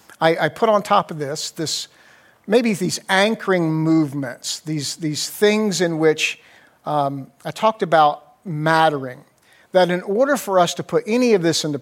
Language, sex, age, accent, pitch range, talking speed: English, male, 50-69, American, 150-190 Hz, 170 wpm